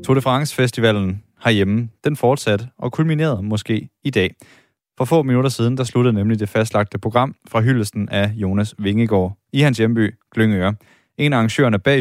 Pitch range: 105-130 Hz